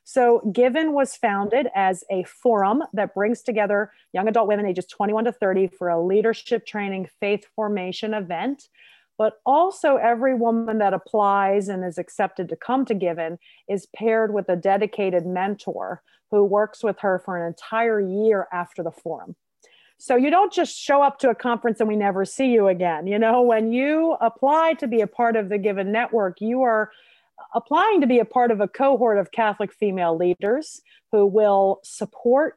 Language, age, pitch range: English, 40-59, 200-245 Hz